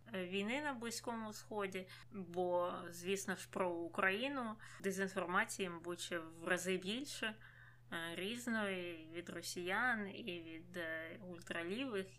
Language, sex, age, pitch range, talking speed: Ukrainian, female, 20-39, 175-210 Hz, 105 wpm